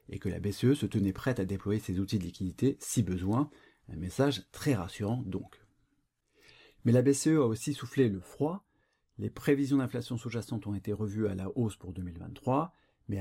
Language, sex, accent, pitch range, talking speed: French, male, French, 100-130 Hz, 185 wpm